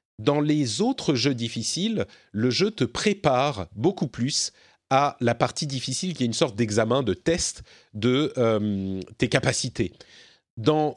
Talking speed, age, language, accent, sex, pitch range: 150 wpm, 40-59, French, French, male, 120-170 Hz